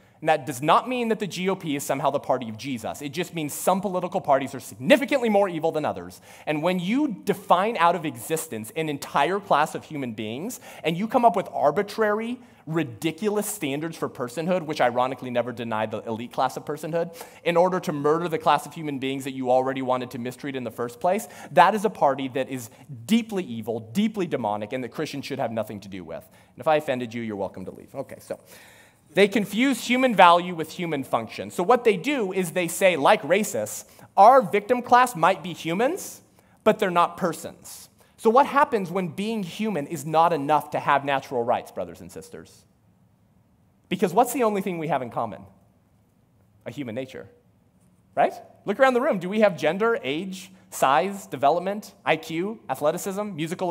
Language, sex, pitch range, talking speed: English, male, 130-200 Hz, 195 wpm